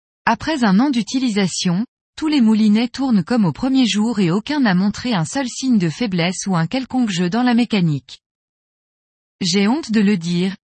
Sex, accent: female, French